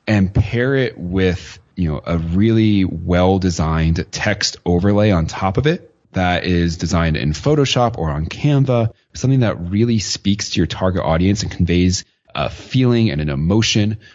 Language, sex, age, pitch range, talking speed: English, male, 30-49, 85-110 Hz, 160 wpm